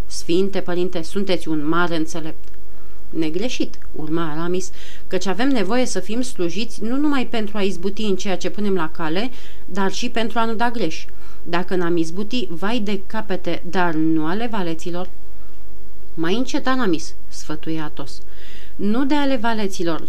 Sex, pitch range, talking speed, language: female, 175-225 Hz, 155 wpm, Romanian